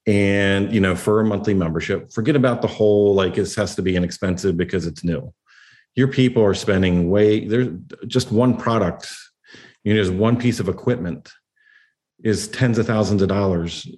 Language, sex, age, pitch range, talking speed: English, male, 40-59, 95-120 Hz, 180 wpm